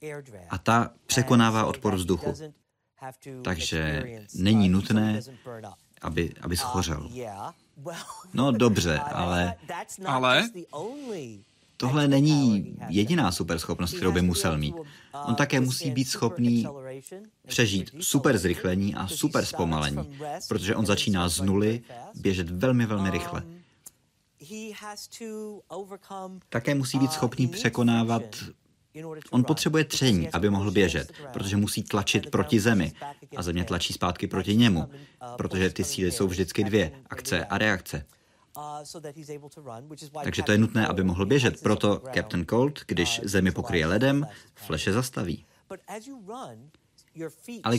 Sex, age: male, 30-49